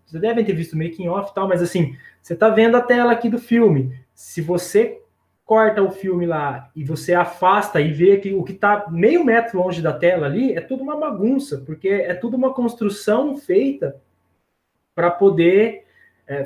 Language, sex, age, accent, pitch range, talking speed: Portuguese, male, 20-39, Brazilian, 150-220 Hz, 185 wpm